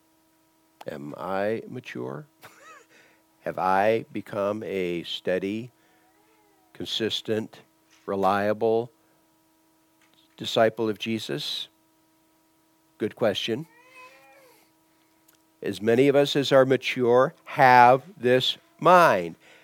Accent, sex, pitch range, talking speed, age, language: American, male, 105-160 Hz, 75 wpm, 50-69, English